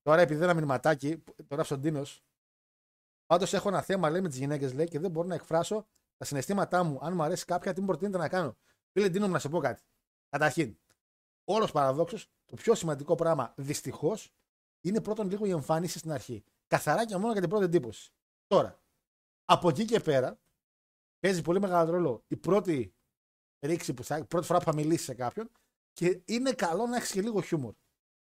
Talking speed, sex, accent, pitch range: 200 wpm, male, native, 150-210 Hz